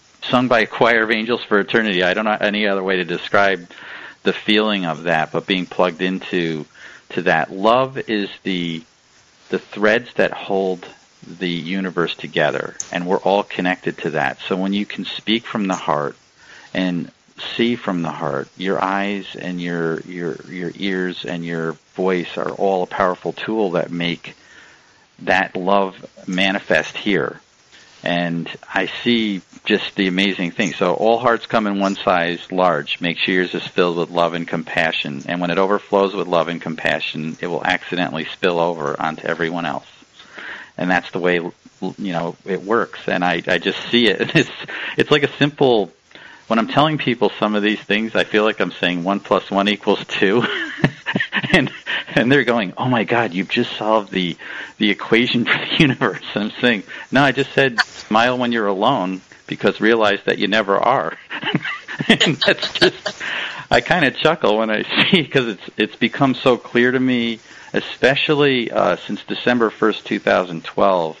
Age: 50-69